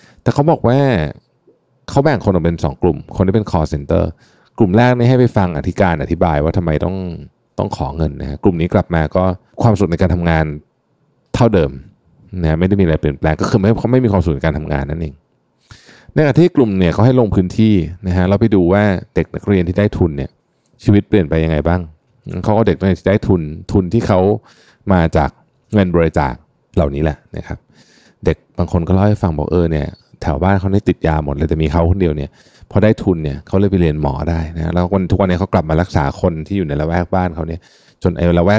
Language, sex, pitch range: Thai, male, 80-100 Hz